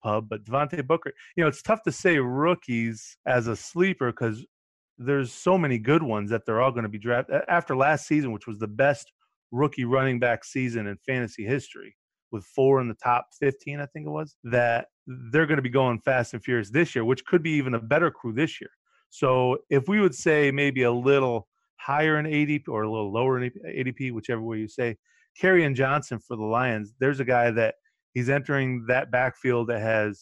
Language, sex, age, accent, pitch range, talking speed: English, male, 30-49, American, 115-140 Hz, 215 wpm